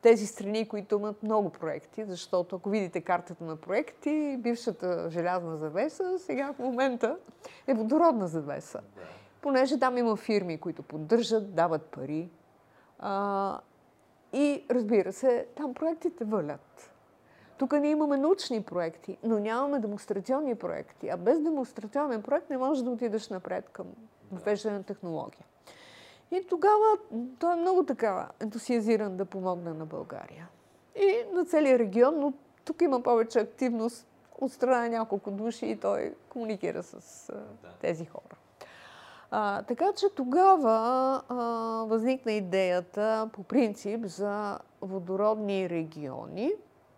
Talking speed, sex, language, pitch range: 125 wpm, female, Bulgarian, 190-265 Hz